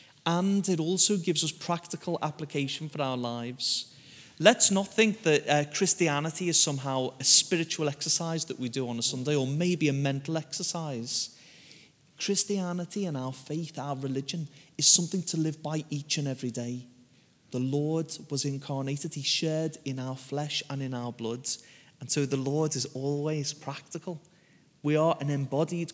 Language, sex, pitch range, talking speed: English, male, 135-160 Hz, 165 wpm